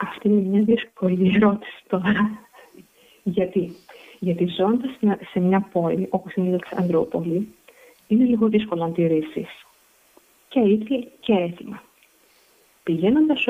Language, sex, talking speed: Greek, female, 110 wpm